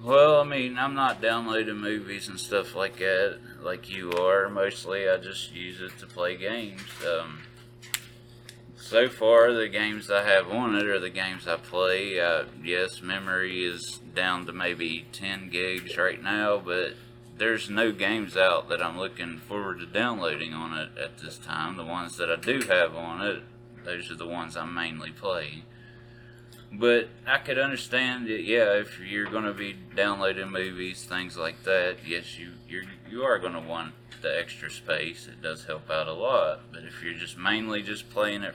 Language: English